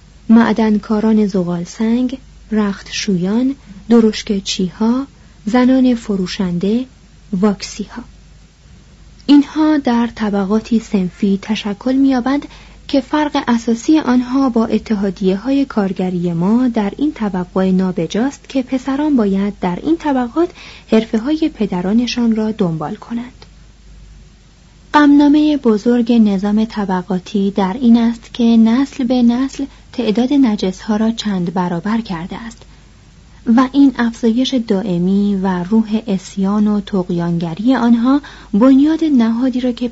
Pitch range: 190-245 Hz